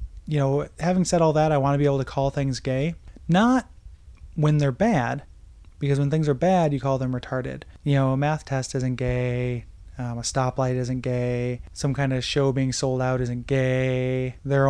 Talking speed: 205 wpm